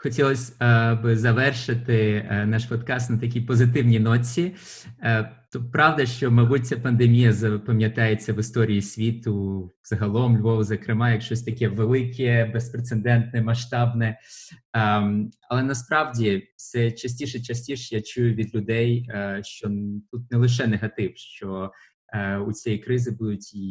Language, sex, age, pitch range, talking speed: Ukrainian, male, 20-39, 100-120 Hz, 115 wpm